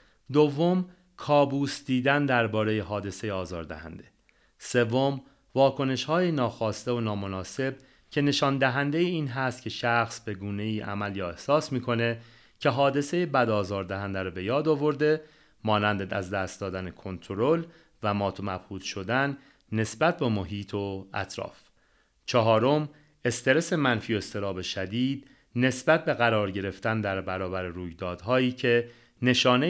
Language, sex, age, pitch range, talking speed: Persian, male, 30-49, 100-140 Hz, 125 wpm